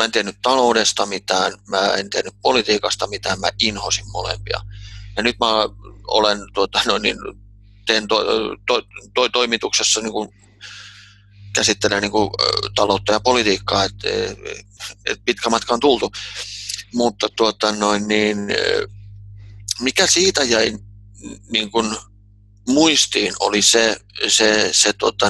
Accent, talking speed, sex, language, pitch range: native, 120 wpm, male, Finnish, 100-115 Hz